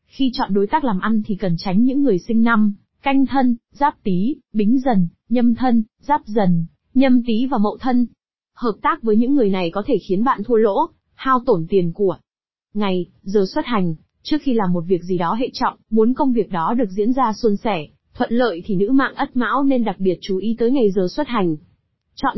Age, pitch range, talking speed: 20-39, 195-255 Hz, 225 wpm